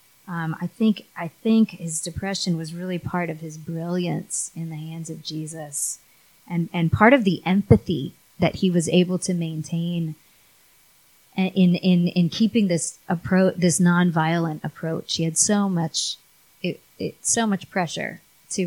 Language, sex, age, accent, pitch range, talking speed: English, female, 30-49, American, 160-190 Hz, 160 wpm